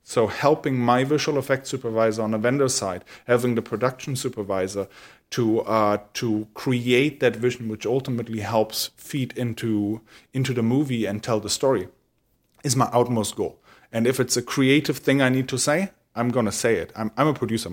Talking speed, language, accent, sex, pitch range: 185 wpm, English, German, male, 120-150 Hz